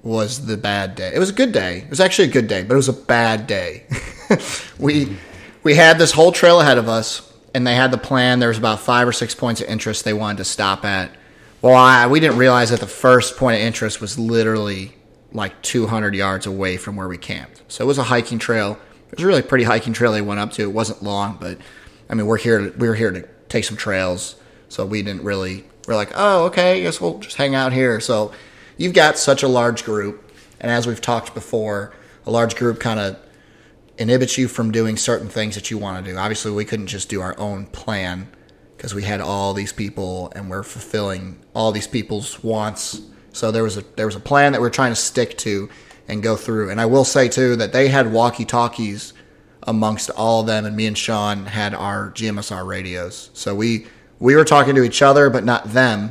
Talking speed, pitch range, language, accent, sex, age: 235 wpm, 105-125 Hz, English, American, male, 30-49